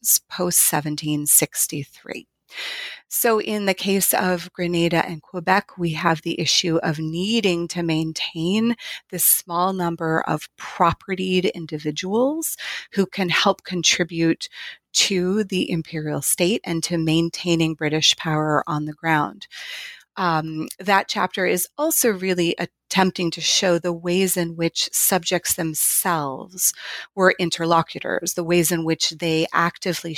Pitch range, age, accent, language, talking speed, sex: 160-195 Hz, 30-49, American, English, 125 wpm, female